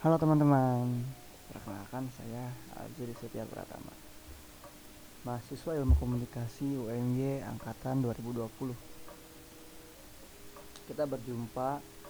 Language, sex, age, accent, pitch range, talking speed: Indonesian, male, 20-39, native, 110-135 Hz, 75 wpm